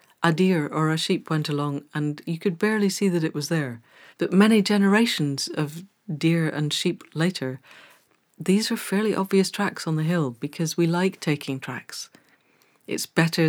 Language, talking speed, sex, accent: English, 175 wpm, female, British